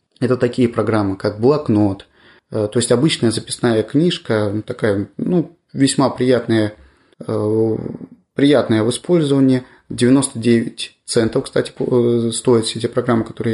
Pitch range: 110-130 Hz